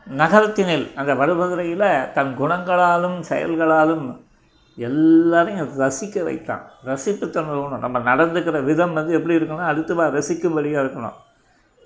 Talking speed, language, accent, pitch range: 105 wpm, Tamil, native, 150-180 Hz